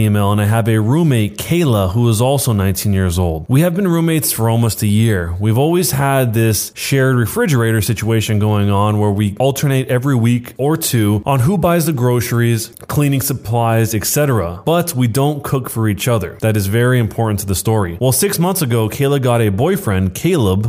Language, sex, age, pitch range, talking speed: English, male, 20-39, 110-140 Hz, 195 wpm